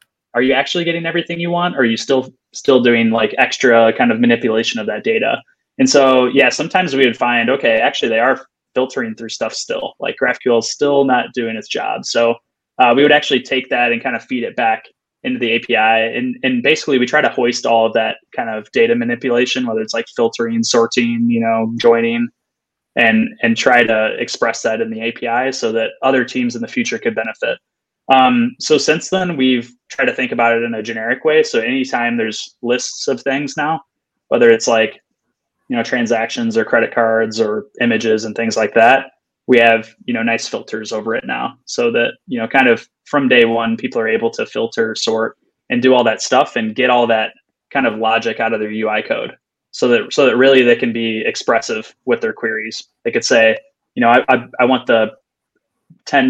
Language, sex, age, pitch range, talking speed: English, male, 20-39, 115-155 Hz, 215 wpm